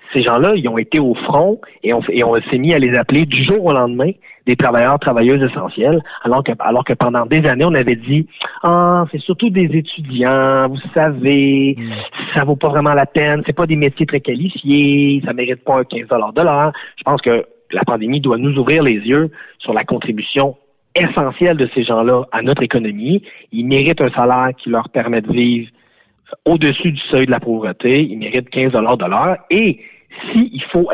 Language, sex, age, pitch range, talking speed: French, male, 40-59, 125-150 Hz, 215 wpm